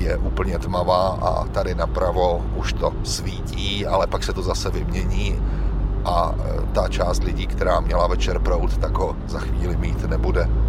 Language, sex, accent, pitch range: Czech, male, native, 85-100 Hz